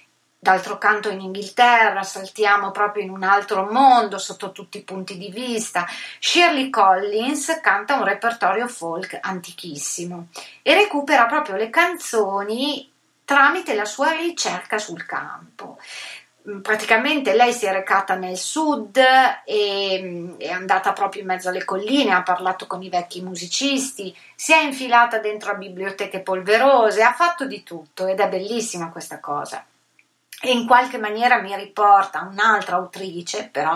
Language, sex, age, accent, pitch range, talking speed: Italian, female, 30-49, native, 180-235 Hz, 140 wpm